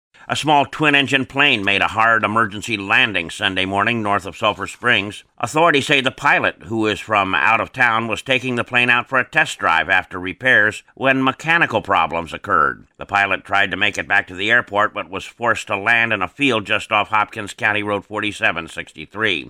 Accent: American